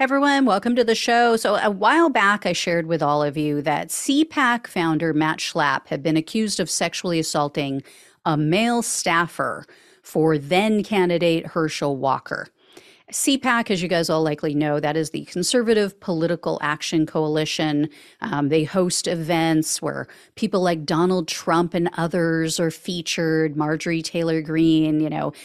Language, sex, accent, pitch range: English, female, American, 160-210 Hz